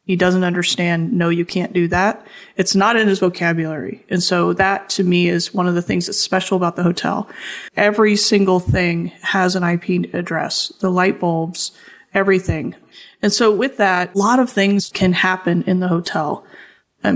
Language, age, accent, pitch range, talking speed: English, 30-49, American, 170-190 Hz, 185 wpm